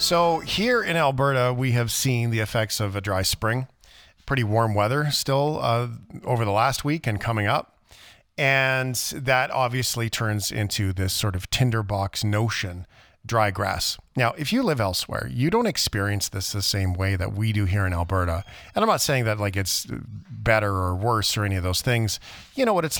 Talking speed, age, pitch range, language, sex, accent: 195 wpm, 40-59, 105-135 Hz, English, male, American